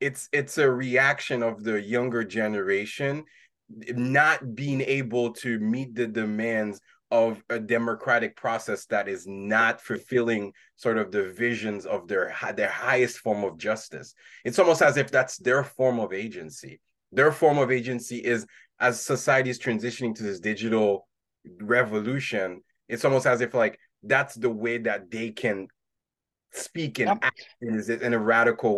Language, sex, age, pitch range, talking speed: English, male, 20-39, 110-140 Hz, 150 wpm